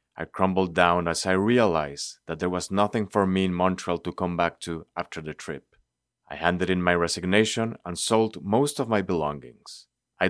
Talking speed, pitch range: 190 wpm, 90-110 Hz